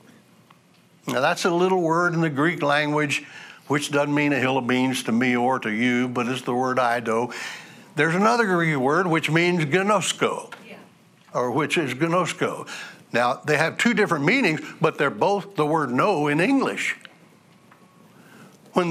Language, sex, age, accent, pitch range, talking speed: English, male, 60-79, American, 150-205 Hz, 170 wpm